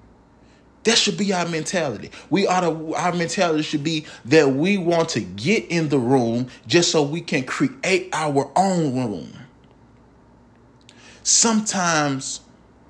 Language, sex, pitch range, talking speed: English, male, 140-190 Hz, 135 wpm